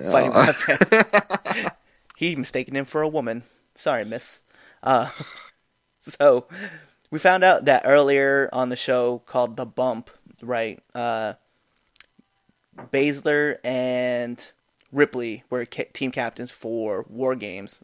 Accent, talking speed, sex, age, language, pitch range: American, 110 wpm, male, 20-39, English, 125-145 Hz